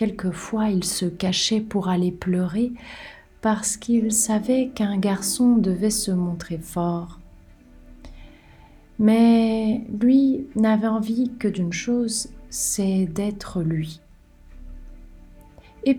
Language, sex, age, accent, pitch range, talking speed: French, female, 30-49, French, 175-230 Hz, 100 wpm